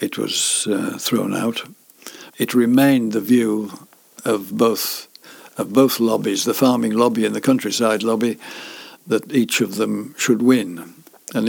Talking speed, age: 145 wpm, 60-79